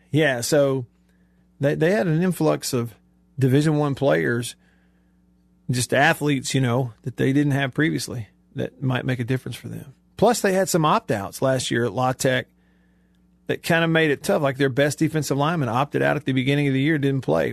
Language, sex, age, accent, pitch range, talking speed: English, male, 40-59, American, 125-165 Hz, 200 wpm